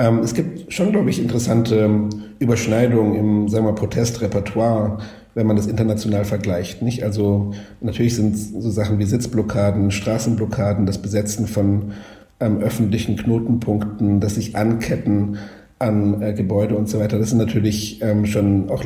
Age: 50-69